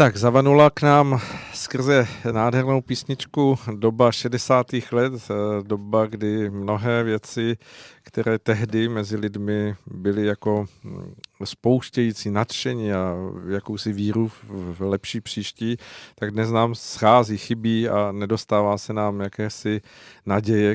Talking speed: 115 wpm